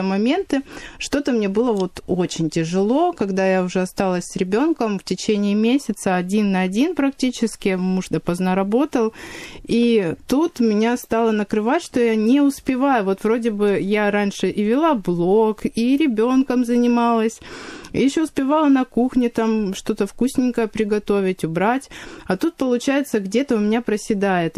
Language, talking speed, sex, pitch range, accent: Russian, 145 wpm, female, 195-255 Hz, native